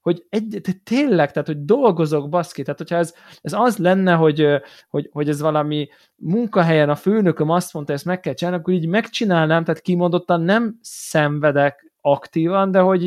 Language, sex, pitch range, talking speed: Hungarian, male, 140-180 Hz, 170 wpm